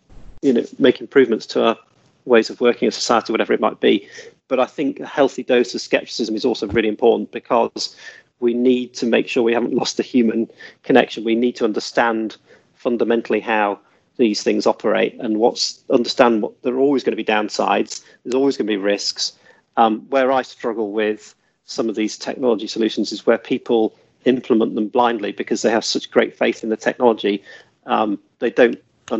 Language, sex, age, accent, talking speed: English, male, 40-59, British, 195 wpm